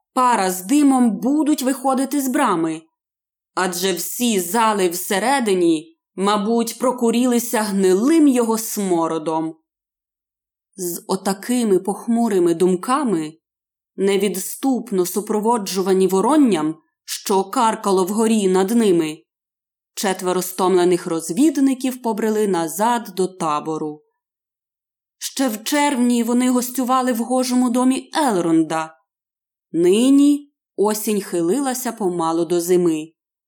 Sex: female